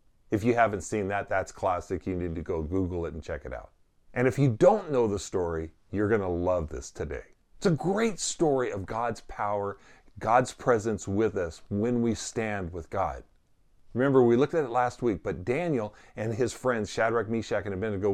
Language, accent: English, American